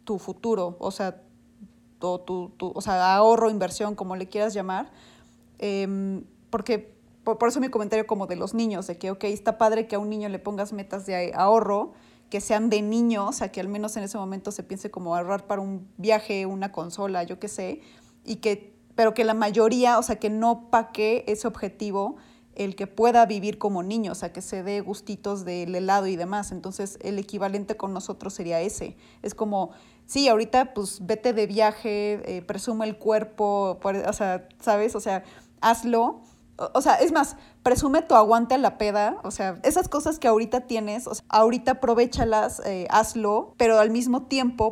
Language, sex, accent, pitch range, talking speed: Spanish, female, Mexican, 195-230 Hz, 190 wpm